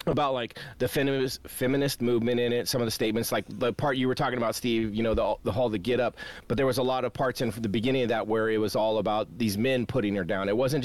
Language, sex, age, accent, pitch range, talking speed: English, male, 30-49, American, 115-155 Hz, 295 wpm